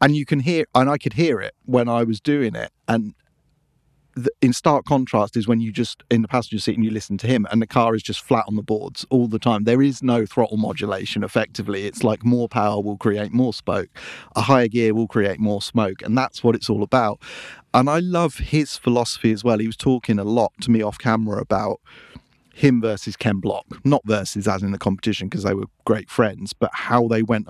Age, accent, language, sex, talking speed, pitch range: 40-59, British, English, male, 230 wpm, 105-130 Hz